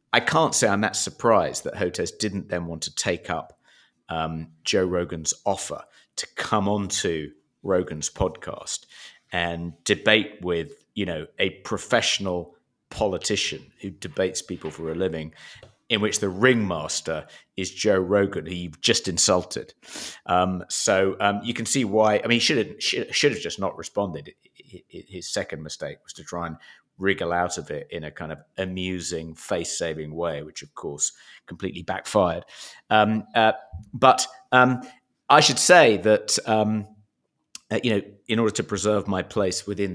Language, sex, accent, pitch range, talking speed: English, male, British, 85-105 Hz, 165 wpm